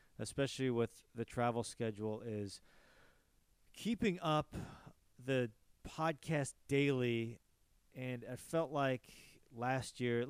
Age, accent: 40-59, American